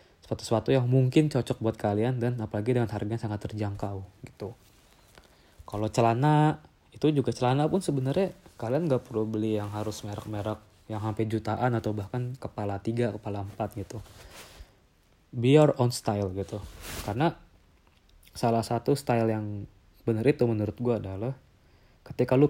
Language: Indonesian